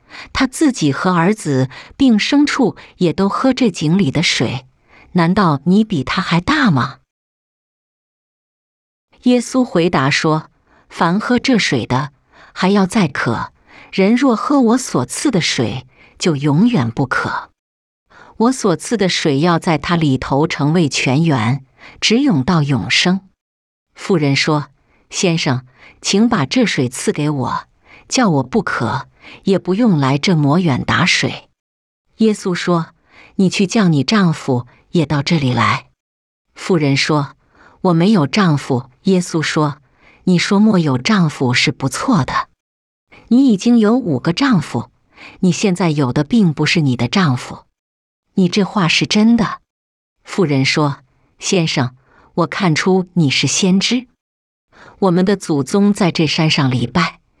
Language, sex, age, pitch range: English, female, 50-69, 140-200 Hz